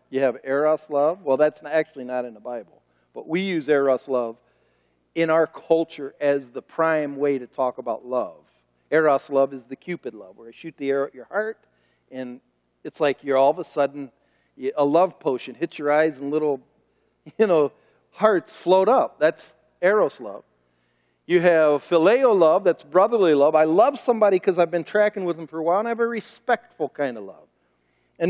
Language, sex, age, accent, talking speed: English, male, 50-69, American, 195 wpm